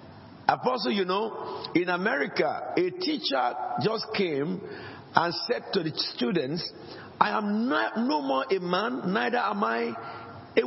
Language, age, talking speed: English, 50-69, 140 wpm